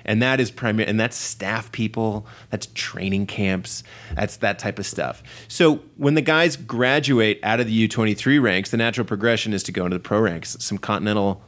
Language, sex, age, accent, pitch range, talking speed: English, male, 30-49, American, 105-130 Hz, 190 wpm